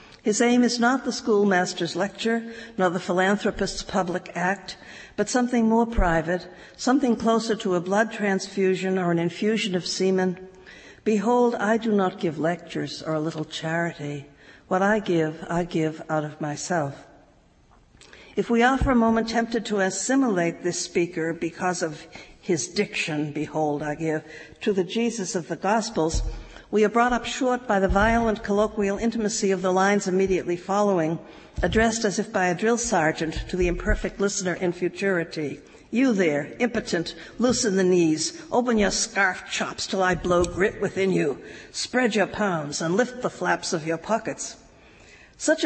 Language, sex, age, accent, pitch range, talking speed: English, female, 60-79, American, 170-220 Hz, 165 wpm